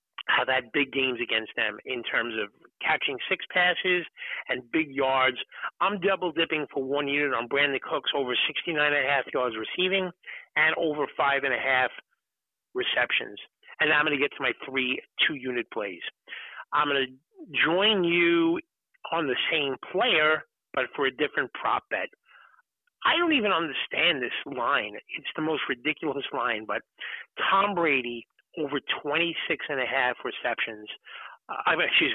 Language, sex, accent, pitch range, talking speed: English, male, American, 135-180 Hz, 145 wpm